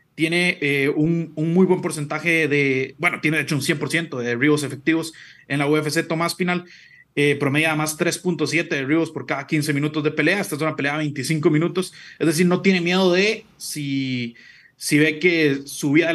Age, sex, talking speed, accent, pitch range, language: 30-49, male, 195 wpm, Mexican, 145-180 Hz, Spanish